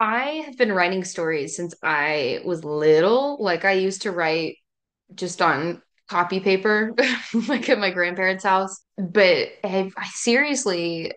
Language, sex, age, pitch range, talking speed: English, female, 10-29, 170-210 Hz, 140 wpm